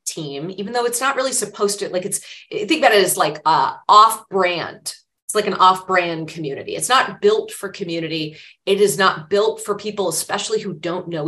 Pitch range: 175-240 Hz